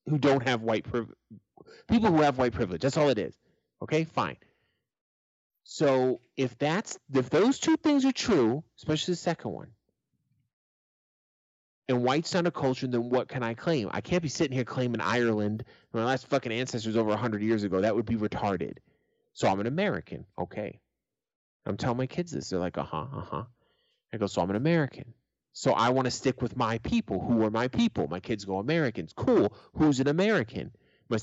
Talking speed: 190 wpm